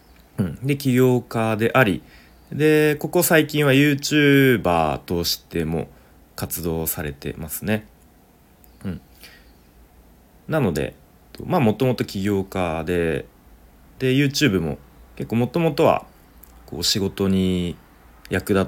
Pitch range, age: 80-125 Hz, 30-49